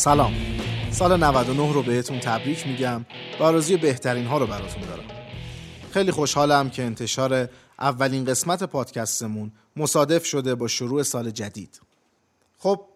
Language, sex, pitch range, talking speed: Persian, male, 125-160 Hz, 125 wpm